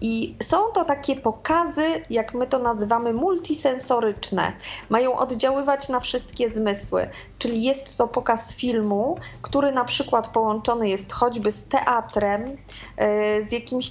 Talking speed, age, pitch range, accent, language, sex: 130 wpm, 20-39, 205-250 Hz, native, Polish, female